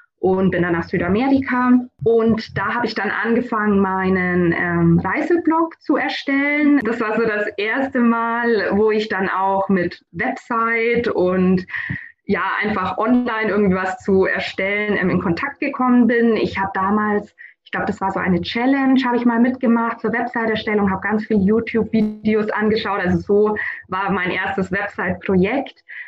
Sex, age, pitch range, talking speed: female, 20-39, 190-235 Hz, 155 wpm